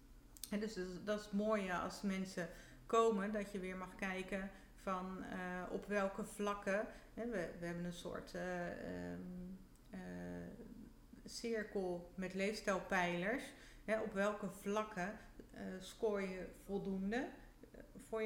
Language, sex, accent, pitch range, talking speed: Dutch, female, Dutch, 180-220 Hz, 120 wpm